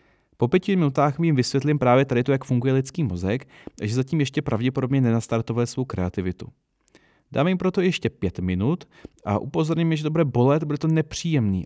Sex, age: male, 30-49